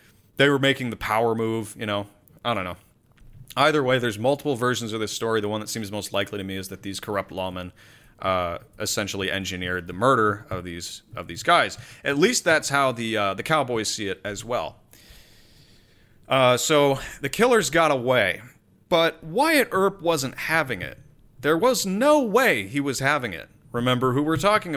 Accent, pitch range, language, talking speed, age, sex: American, 105-140 Hz, English, 190 wpm, 30-49, male